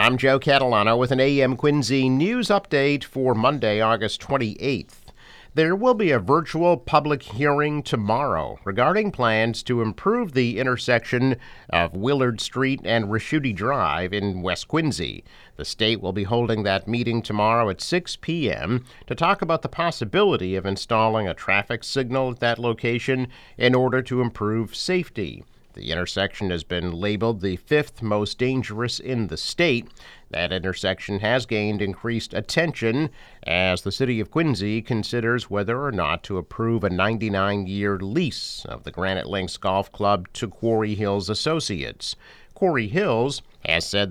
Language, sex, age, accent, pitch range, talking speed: English, male, 50-69, American, 100-130 Hz, 150 wpm